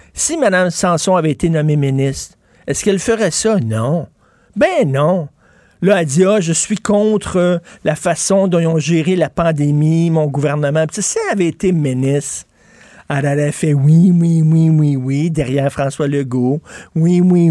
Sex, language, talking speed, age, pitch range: male, French, 180 wpm, 50-69, 145-185 Hz